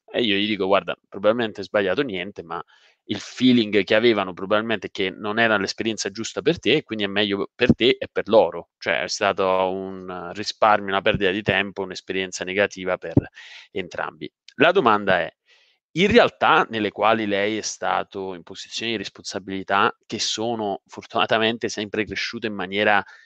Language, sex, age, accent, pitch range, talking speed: Italian, male, 30-49, native, 100-110 Hz, 170 wpm